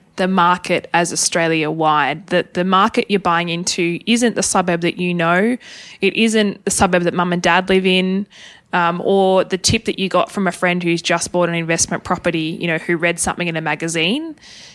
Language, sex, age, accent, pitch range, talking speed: English, female, 20-39, Australian, 175-215 Hz, 210 wpm